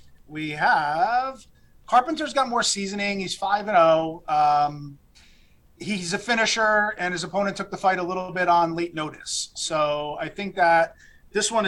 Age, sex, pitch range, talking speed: 30-49, male, 155-185 Hz, 165 wpm